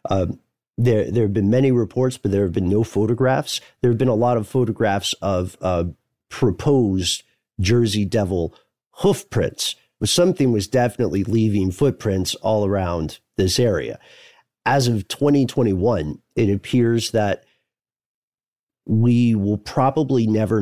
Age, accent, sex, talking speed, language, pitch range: 40-59, American, male, 135 wpm, English, 100-125 Hz